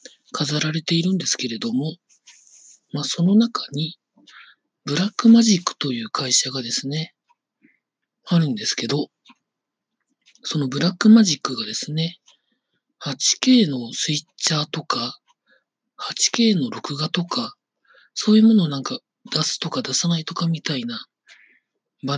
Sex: male